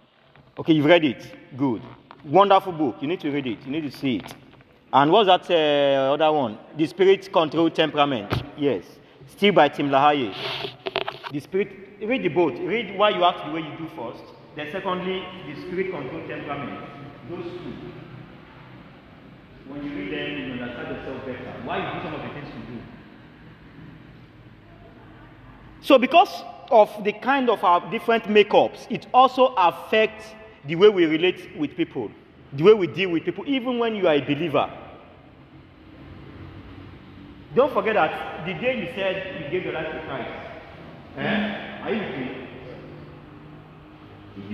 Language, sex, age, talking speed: English, male, 40-59, 170 wpm